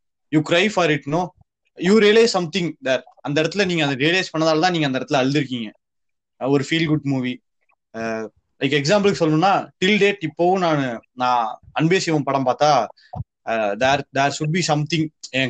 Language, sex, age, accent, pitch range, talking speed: Tamil, male, 20-39, native, 130-175 Hz, 180 wpm